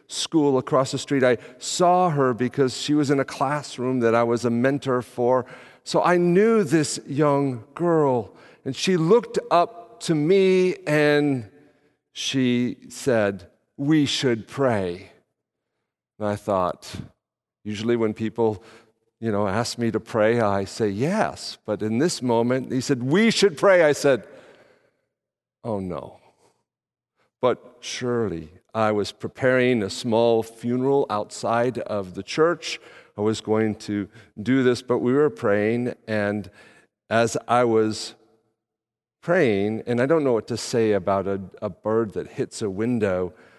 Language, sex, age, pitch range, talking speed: English, male, 50-69, 105-140 Hz, 145 wpm